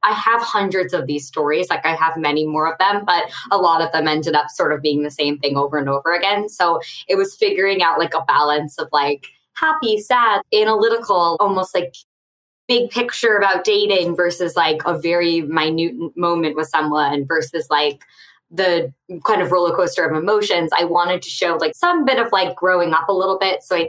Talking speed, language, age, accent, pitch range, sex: 205 wpm, English, 20-39, American, 155-200 Hz, female